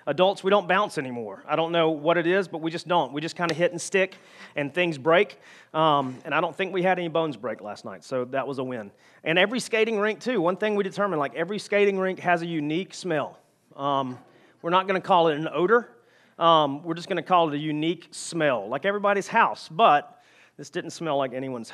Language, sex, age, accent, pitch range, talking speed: English, male, 30-49, American, 135-170 Hz, 240 wpm